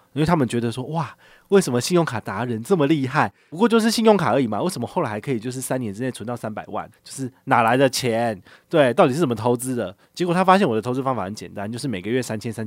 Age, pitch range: 20-39, 105-135 Hz